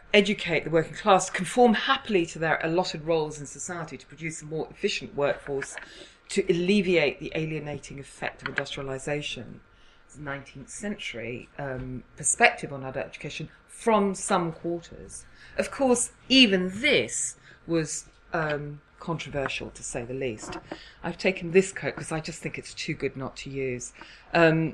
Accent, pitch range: British, 140-185 Hz